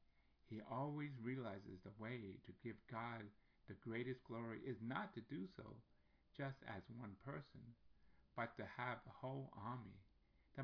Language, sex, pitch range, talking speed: English, male, 100-130 Hz, 150 wpm